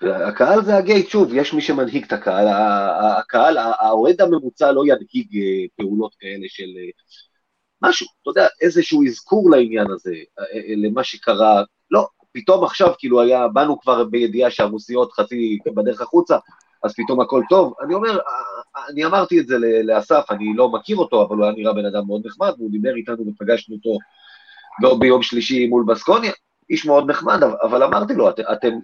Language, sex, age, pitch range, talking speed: Hebrew, male, 30-49, 115-185 Hz, 165 wpm